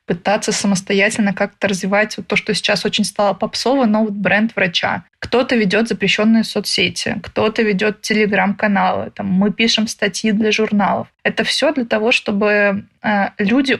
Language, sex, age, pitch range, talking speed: Russian, female, 20-39, 200-225 Hz, 150 wpm